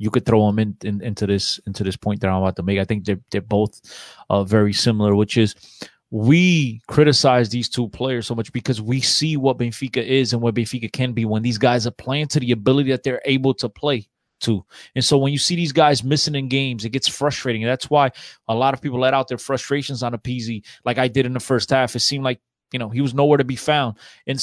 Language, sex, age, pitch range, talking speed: English, male, 20-39, 120-150 Hz, 255 wpm